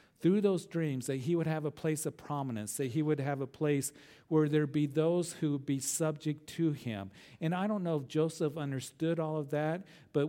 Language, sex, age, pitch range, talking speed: English, male, 50-69, 125-155 Hz, 225 wpm